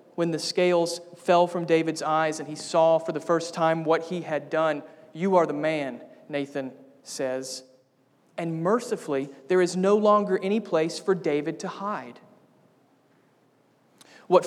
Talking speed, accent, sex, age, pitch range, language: 155 wpm, American, male, 40-59, 155-190 Hz, English